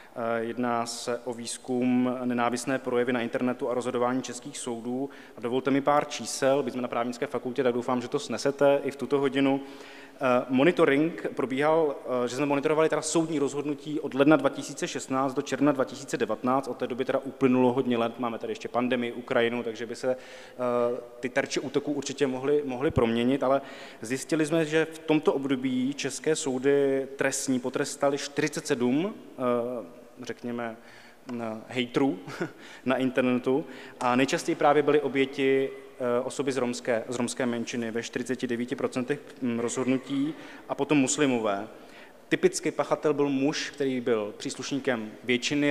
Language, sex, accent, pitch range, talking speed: Czech, male, native, 125-140 Hz, 145 wpm